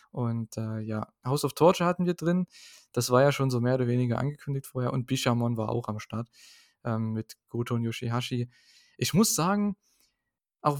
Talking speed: 190 wpm